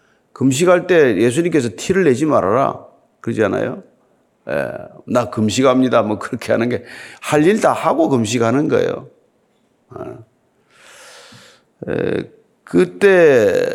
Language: Korean